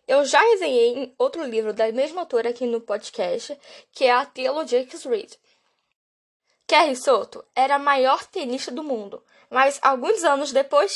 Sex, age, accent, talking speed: female, 10-29, Brazilian, 160 wpm